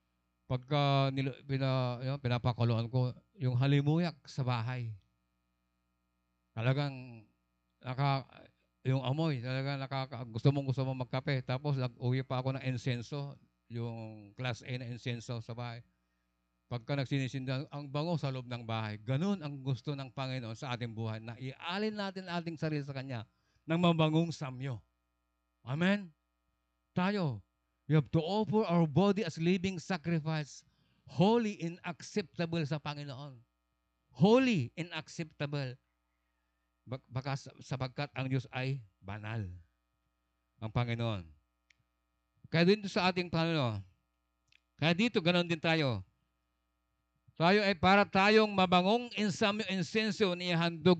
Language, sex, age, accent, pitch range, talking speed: Filipino, male, 50-69, native, 105-160 Hz, 125 wpm